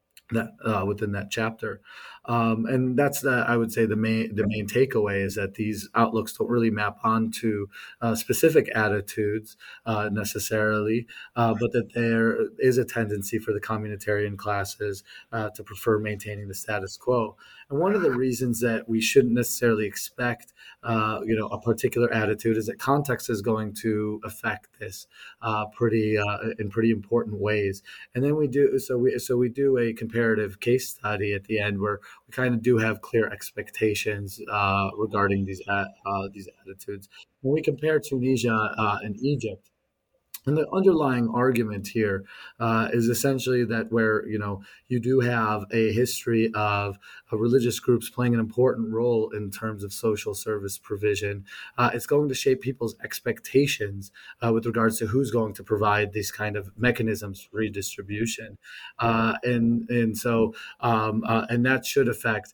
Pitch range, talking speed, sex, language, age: 105-120 Hz, 170 wpm, male, English, 30-49